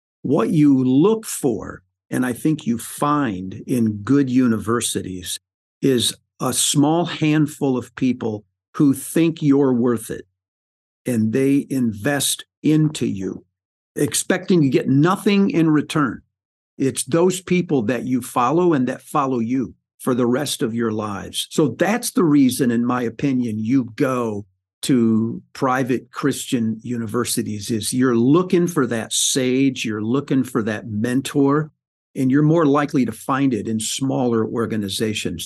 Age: 50-69